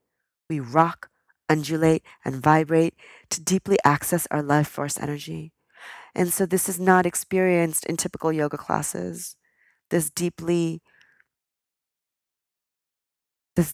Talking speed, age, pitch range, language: 110 wpm, 40-59, 145-185 Hz, English